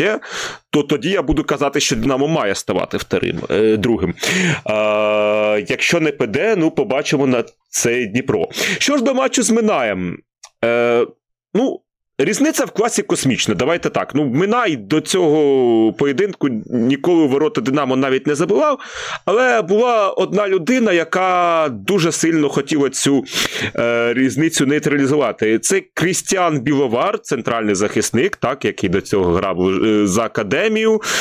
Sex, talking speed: male, 135 wpm